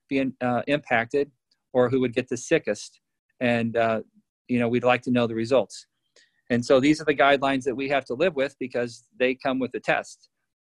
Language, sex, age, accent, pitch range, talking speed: English, male, 40-59, American, 120-140 Hz, 210 wpm